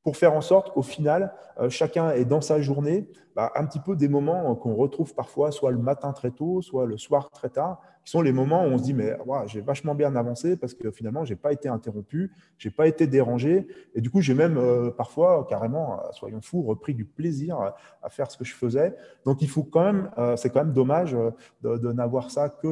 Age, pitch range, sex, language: 30-49, 120-150 Hz, male, French